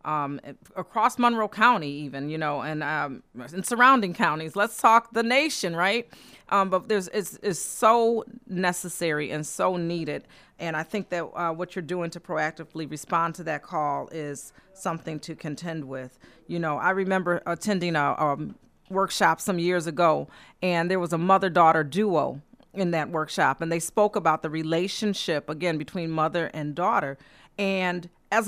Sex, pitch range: female, 160-200 Hz